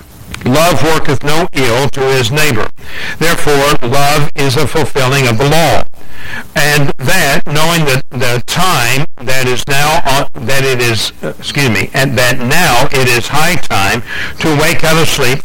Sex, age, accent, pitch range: male, 60-79, American, 125-155 Hz